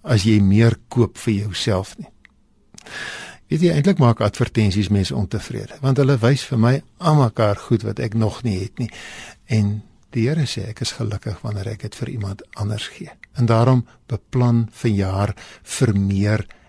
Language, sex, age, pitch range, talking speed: Dutch, male, 60-79, 105-135 Hz, 175 wpm